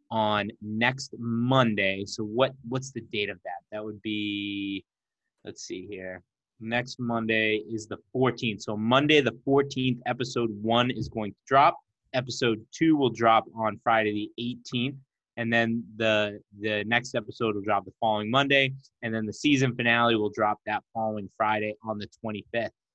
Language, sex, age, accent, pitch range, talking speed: English, male, 30-49, American, 110-130 Hz, 165 wpm